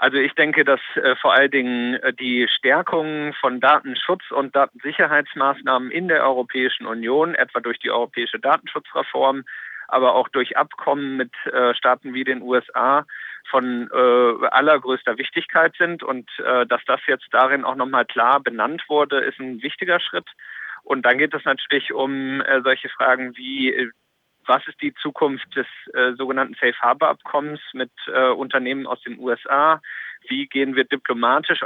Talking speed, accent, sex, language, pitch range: 155 wpm, German, male, German, 125-140 Hz